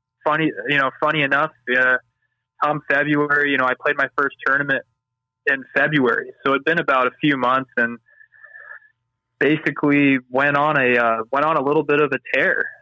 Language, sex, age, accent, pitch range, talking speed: English, male, 20-39, American, 125-140 Hz, 175 wpm